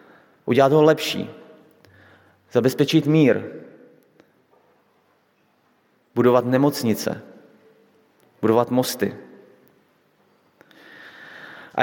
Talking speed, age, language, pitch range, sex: 50 wpm, 30-49, Slovak, 115-160 Hz, male